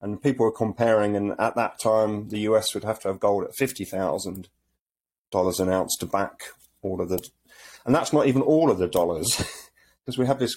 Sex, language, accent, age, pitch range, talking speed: male, English, British, 40-59, 95-115 Hz, 215 wpm